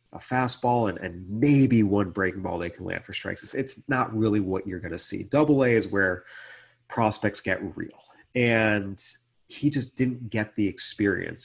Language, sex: English, male